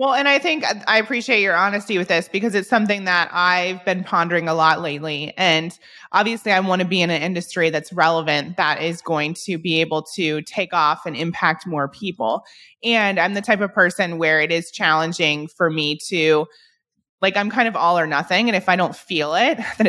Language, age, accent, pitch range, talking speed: English, 20-39, American, 160-200 Hz, 215 wpm